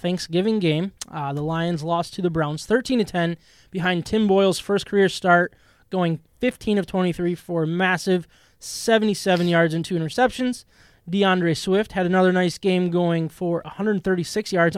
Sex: male